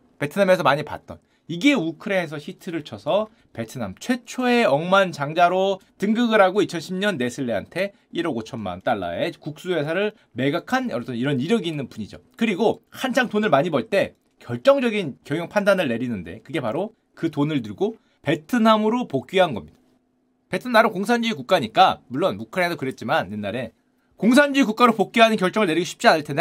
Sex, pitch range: male, 145-225 Hz